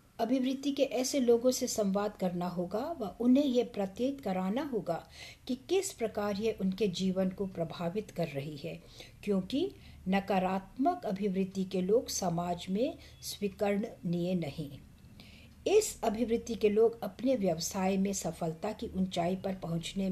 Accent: Indian